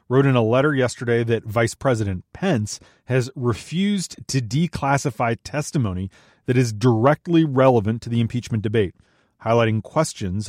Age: 30-49